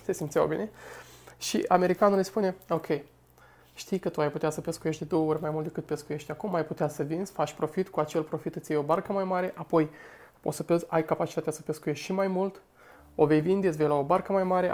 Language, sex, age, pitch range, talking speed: Romanian, male, 20-39, 150-175 Hz, 235 wpm